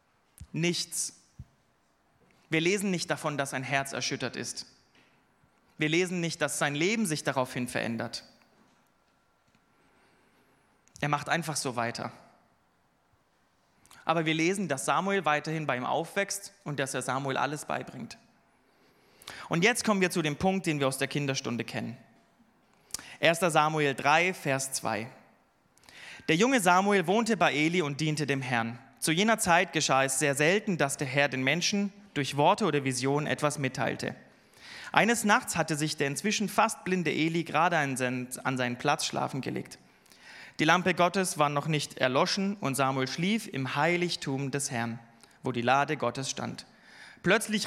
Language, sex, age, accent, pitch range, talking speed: German, male, 30-49, German, 135-190 Hz, 150 wpm